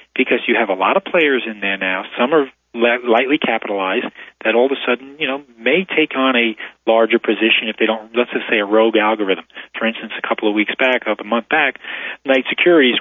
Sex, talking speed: male, 230 wpm